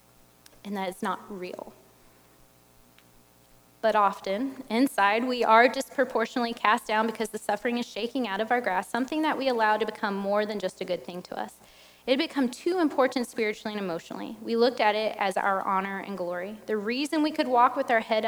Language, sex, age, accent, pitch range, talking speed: English, female, 10-29, American, 195-255 Hz, 200 wpm